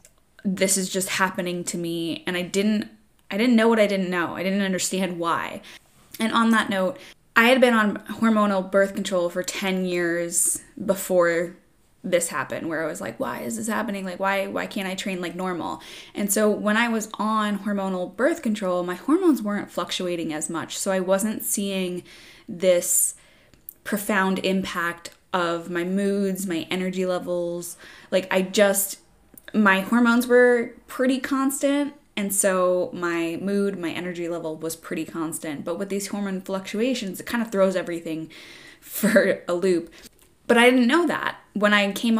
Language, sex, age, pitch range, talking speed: English, female, 10-29, 180-220 Hz, 170 wpm